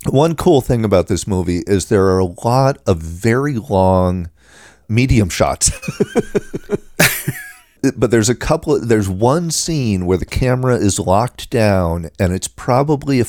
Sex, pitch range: male, 90-115 Hz